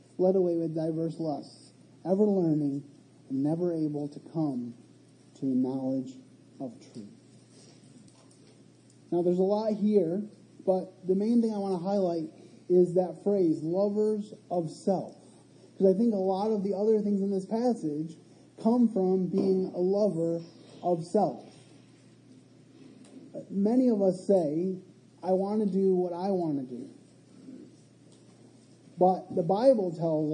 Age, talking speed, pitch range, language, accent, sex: 30-49, 140 wpm, 155-195 Hz, English, American, male